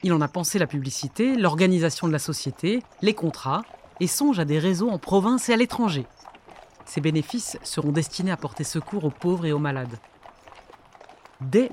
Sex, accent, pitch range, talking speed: female, French, 145-190 Hz, 180 wpm